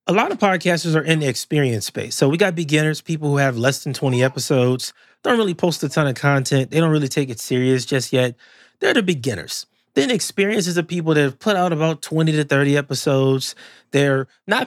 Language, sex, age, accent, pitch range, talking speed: English, male, 30-49, American, 130-170 Hz, 215 wpm